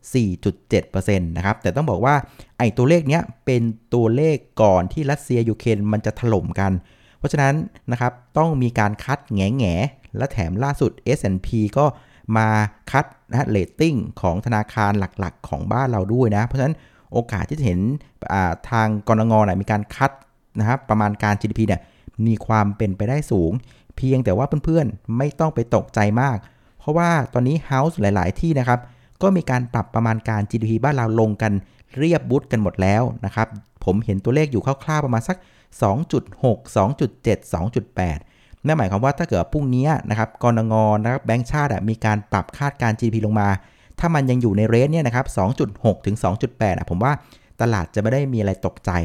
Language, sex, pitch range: Thai, male, 105-135 Hz